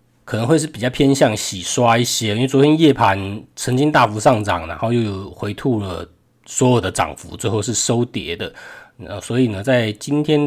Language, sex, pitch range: Chinese, male, 105-135 Hz